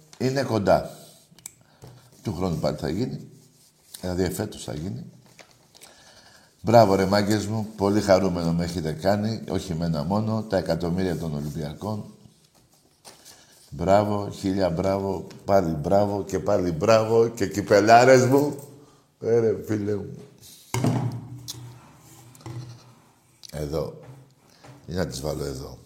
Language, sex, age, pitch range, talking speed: Greek, male, 60-79, 95-130 Hz, 105 wpm